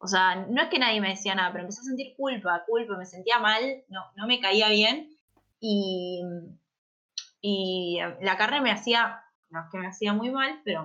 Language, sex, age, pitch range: Spanish, female, 20-39, 185-250 Hz